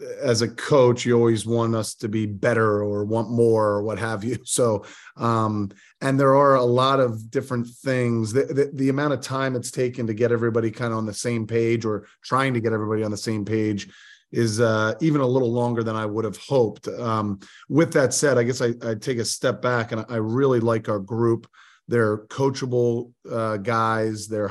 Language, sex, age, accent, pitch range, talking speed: English, male, 30-49, American, 110-125 Hz, 215 wpm